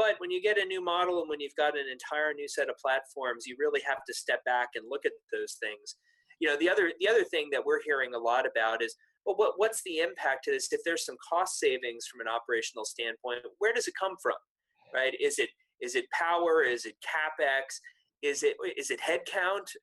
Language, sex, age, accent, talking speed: English, male, 30-49, American, 235 wpm